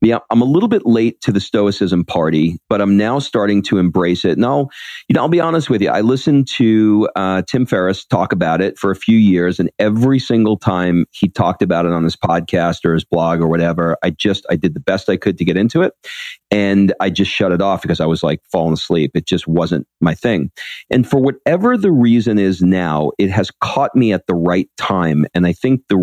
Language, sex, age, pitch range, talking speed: English, male, 40-59, 85-105 Hz, 235 wpm